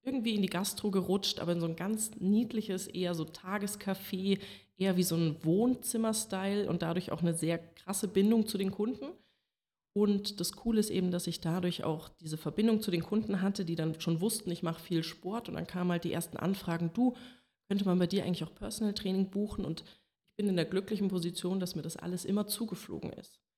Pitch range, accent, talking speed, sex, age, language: 170-200 Hz, German, 210 wpm, female, 30-49, German